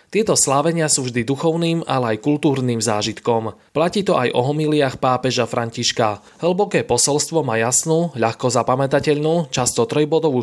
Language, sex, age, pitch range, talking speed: Slovak, male, 20-39, 125-155 Hz, 140 wpm